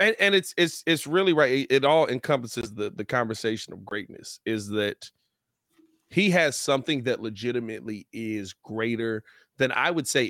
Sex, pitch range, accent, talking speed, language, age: male, 115-160 Hz, American, 165 wpm, English, 30-49